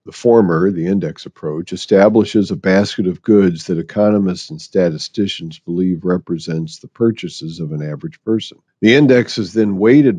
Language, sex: English, male